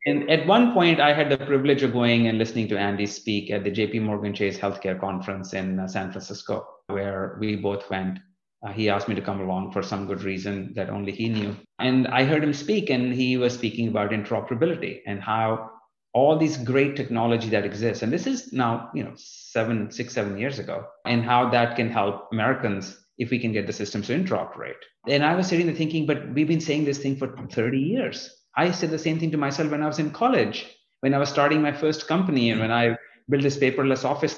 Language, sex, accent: English, male, Indian